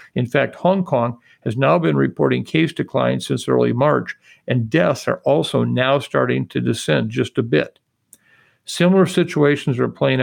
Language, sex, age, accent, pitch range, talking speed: English, male, 50-69, American, 125-150 Hz, 165 wpm